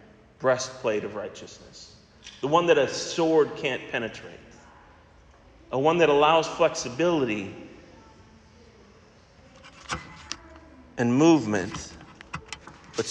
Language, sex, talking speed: English, male, 80 wpm